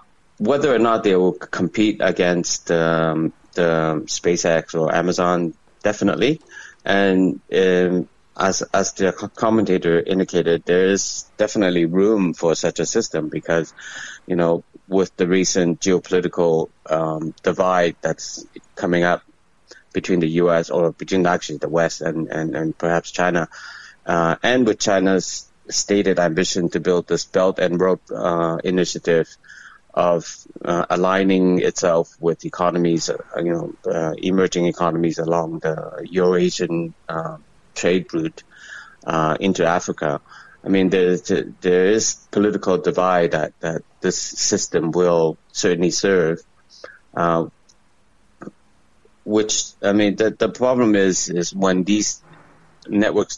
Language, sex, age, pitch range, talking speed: English, male, 30-49, 85-95 Hz, 125 wpm